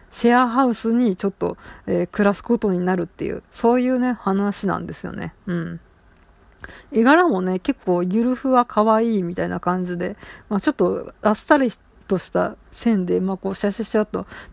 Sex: female